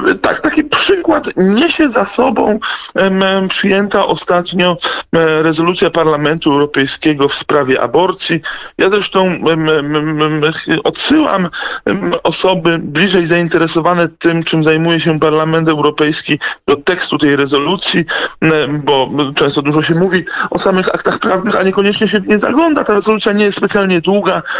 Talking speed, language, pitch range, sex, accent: 140 wpm, Polish, 160-200 Hz, male, native